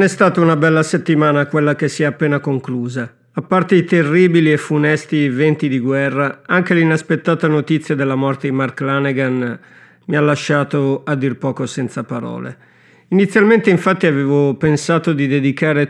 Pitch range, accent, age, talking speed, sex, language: 135-160 Hz, native, 50-69, 160 wpm, male, Italian